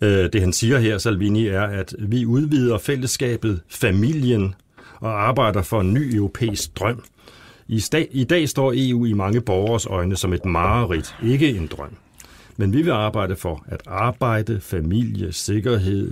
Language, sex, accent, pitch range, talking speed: Danish, male, native, 95-120 Hz, 155 wpm